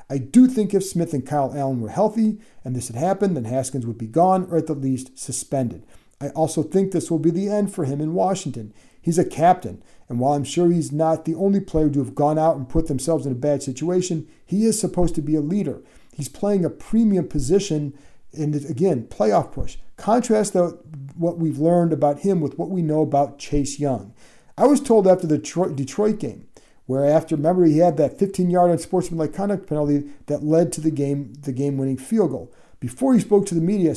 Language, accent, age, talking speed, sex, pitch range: English, American, 50-69, 215 wpm, male, 140-180 Hz